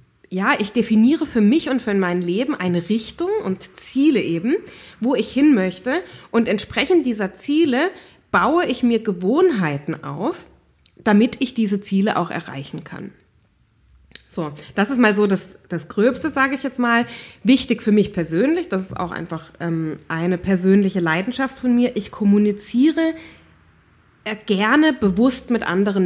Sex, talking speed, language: female, 150 wpm, German